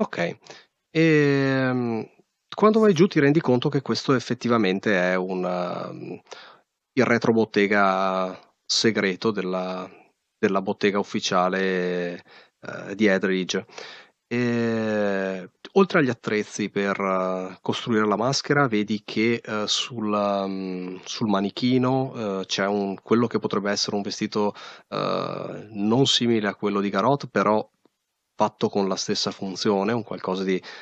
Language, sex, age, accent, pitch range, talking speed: Italian, male, 30-49, native, 95-115 Hz, 125 wpm